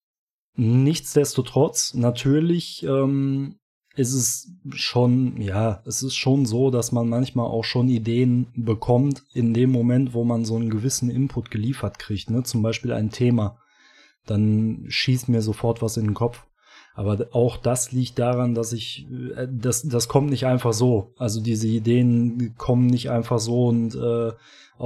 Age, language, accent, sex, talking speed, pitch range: 20-39, German, German, male, 155 wpm, 115-135 Hz